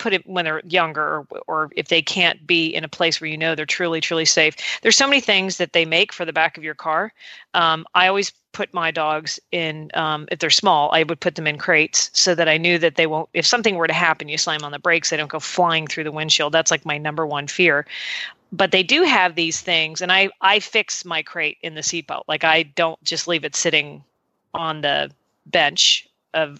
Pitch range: 155-180 Hz